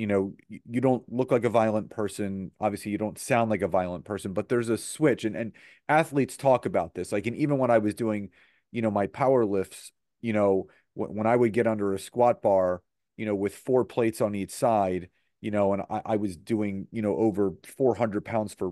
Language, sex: English, male